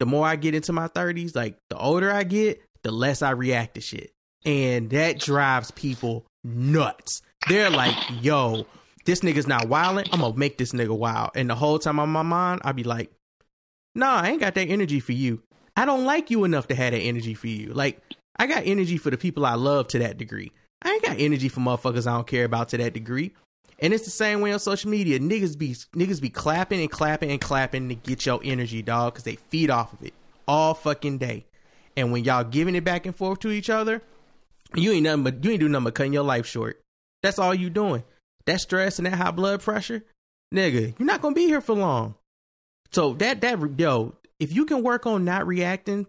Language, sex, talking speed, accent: English, male, 235 wpm, American